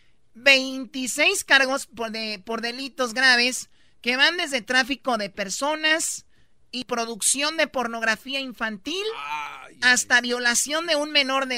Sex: male